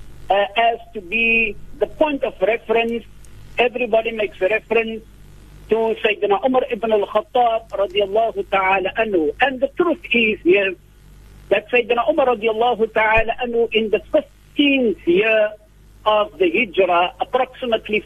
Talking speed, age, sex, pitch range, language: 135 wpm, 50-69, male, 200-255 Hz, English